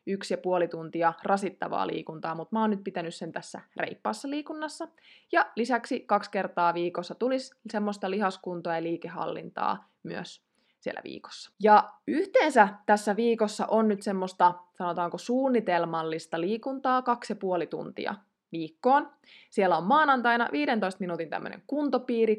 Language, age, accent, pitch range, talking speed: Finnish, 20-39, native, 175-230 Hz, 130 wpm